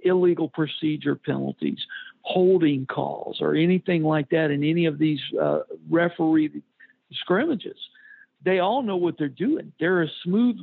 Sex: male